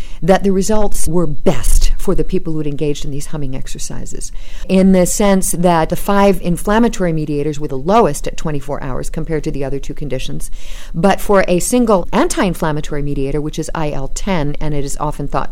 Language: English